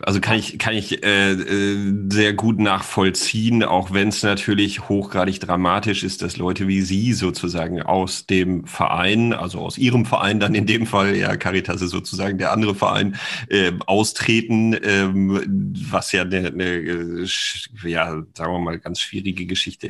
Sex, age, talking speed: male, 40-59, 165 wpm